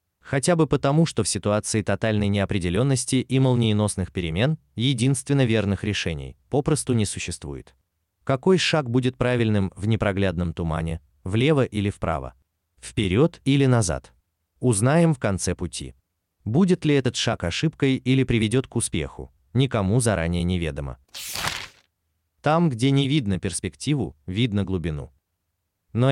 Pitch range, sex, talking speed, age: 85-130 Hz, male, 125 wpm, 30-49